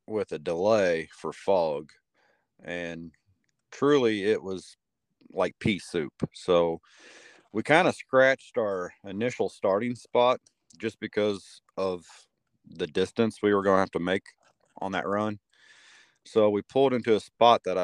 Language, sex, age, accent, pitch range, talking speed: English, male, 40-59, American, 85-105 Hz, 145 wpm